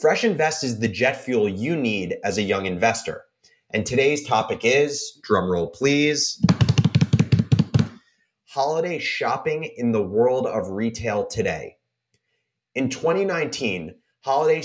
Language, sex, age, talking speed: English, male, 30-49, 120 wpm